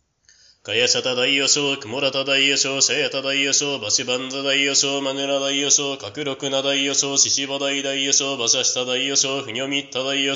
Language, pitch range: Japanese, 135-140 Hz